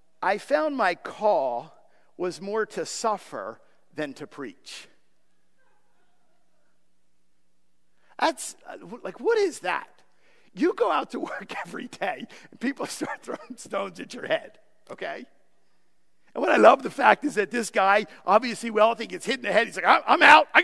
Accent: American